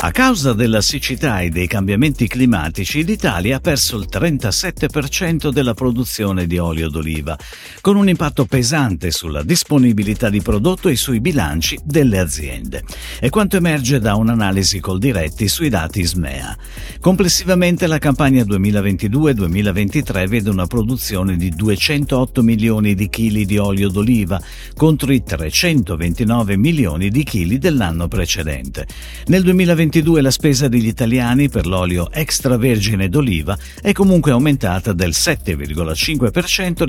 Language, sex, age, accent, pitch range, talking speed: Italian, male, 50-69, native, 95-150 Hz, 130 wpm